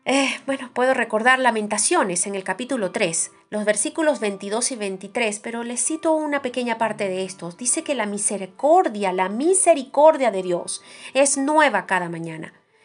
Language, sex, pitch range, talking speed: Spanish, female, 185-265 Hz, 160 wpm